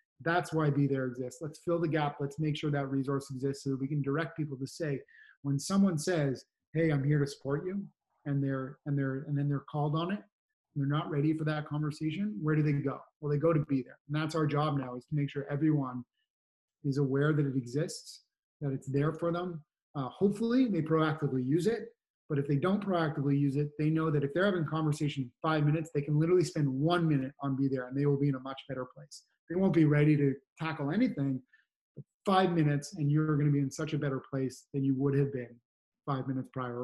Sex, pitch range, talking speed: male, 140-160 Hz, 245 wpm